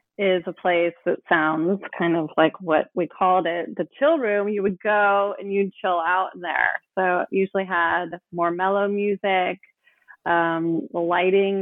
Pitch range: 175-225 Hz